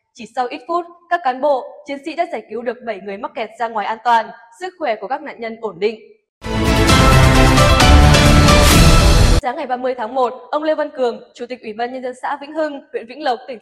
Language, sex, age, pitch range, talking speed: Vietnamese, female, 20-39, 220-285 Hz, 225 wpm